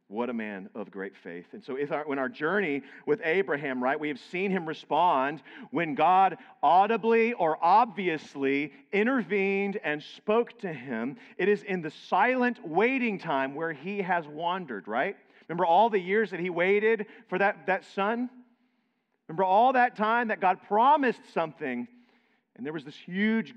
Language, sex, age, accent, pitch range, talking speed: English, male, 40-59, American, 135-225 Hz, 170 wpm